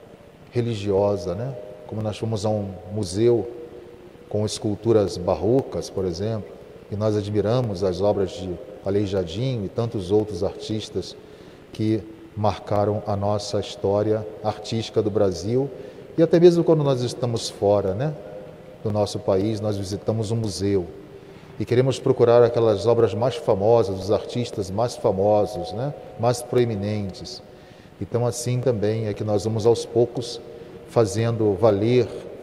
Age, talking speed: 40-59, 135 wpm